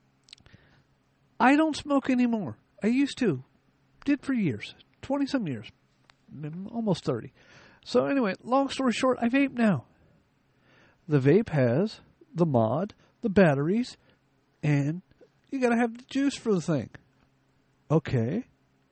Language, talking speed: English, 125 wpm